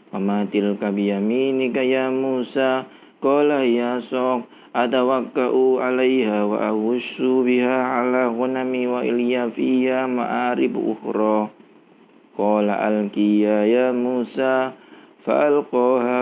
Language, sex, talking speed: Indonesian, male, 80 wpm